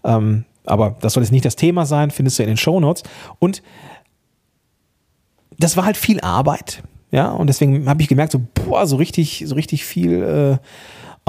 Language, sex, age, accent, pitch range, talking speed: German, male, 40-59, German, 115-145 Hz, 180 wpm